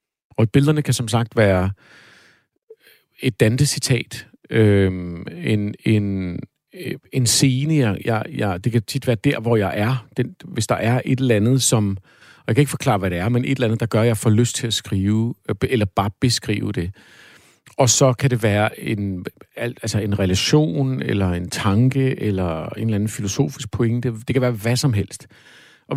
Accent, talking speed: native, 190 wpm